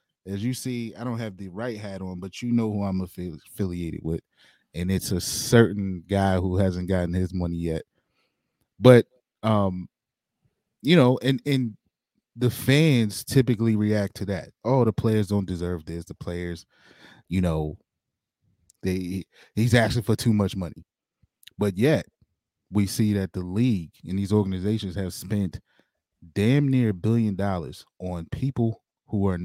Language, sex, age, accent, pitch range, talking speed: English, male, 20-39, American, 95-115 Hz, 160 wpm